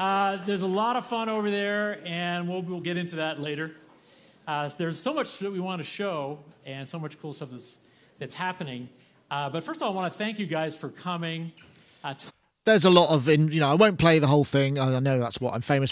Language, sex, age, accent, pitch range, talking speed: English, male, 40-59, British, 125-160 Hz, 255 wpm